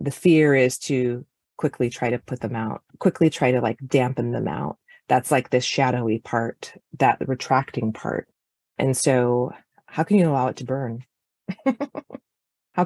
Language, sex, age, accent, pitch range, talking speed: English, female, 30-49, American, 130-160 Hz, 165 wpm